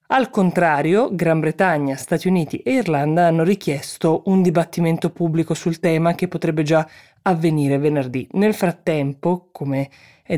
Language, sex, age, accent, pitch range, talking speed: Italian, female, 20-39, native, 155-180 Hz, 140 wpm